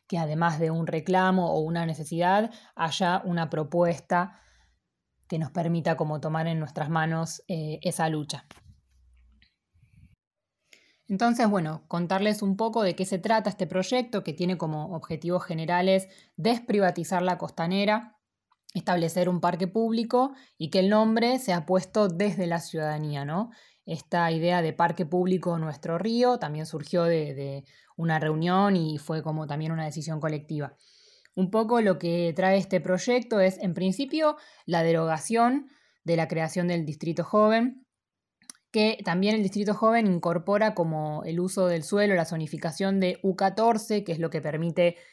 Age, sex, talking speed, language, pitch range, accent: 20-39, female, 150 wpm, Spanish, 160-195 Hz, Argentinian